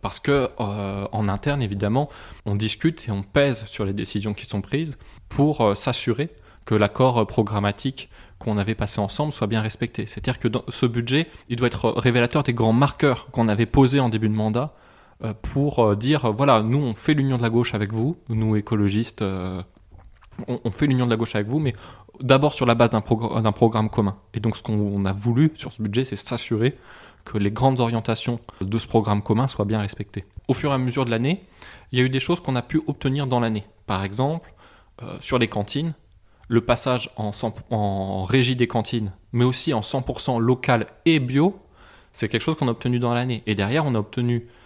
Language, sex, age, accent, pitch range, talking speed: French, male, 20-39, French, 105-130 Hz, 210 wpm